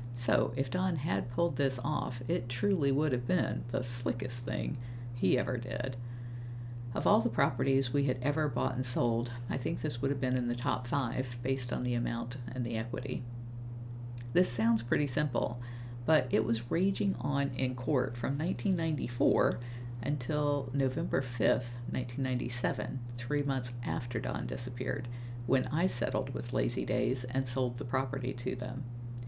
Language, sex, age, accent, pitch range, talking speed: English, female, 50-69, American, 120-135 Hz, 160 wpm